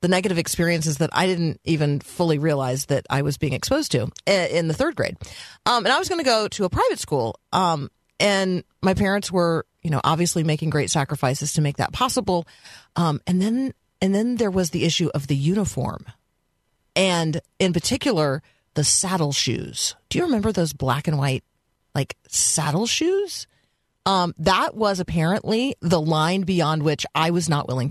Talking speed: 185 wpm